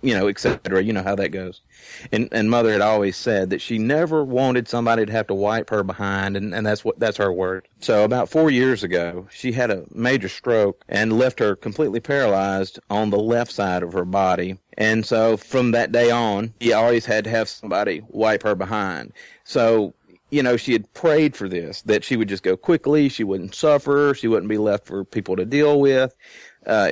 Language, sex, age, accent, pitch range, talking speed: English, male, 40-59, American, 100-130 Hz, 215 wpm